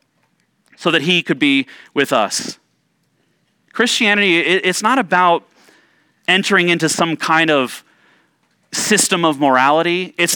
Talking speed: 115 wpm